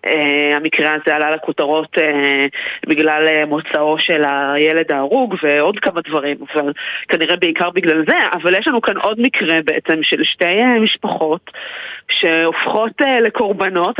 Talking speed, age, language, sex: 145 wpm, 20-39, Hebrew, female